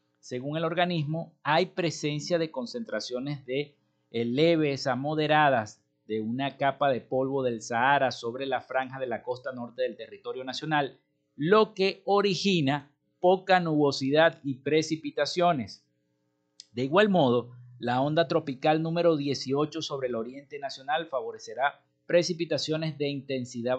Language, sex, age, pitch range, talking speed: Spanish, male, 50-69, 125-160 Hz, 130 wpm